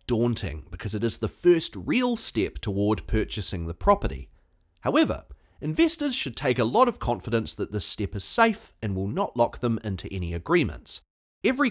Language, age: English, 30-49